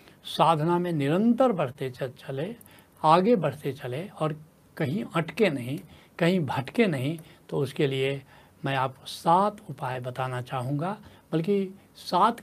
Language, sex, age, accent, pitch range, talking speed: Hindi, male, 70-89, native, 135-190 Hz, 125 wpm